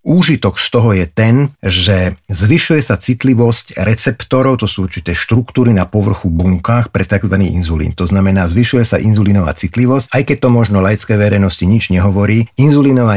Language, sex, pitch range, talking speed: Slovak, male, 95-120 Hz, 160 wpm